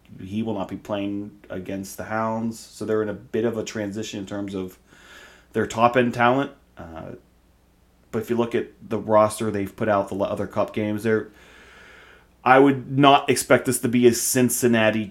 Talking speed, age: 185 wpm, 30-49